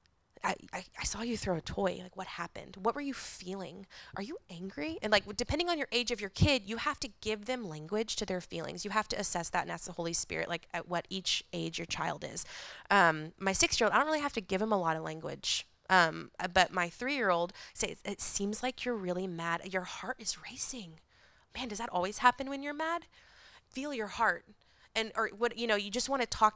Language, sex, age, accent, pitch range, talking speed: English, female, 20-39, American, 180-235 Hz, 230 wpm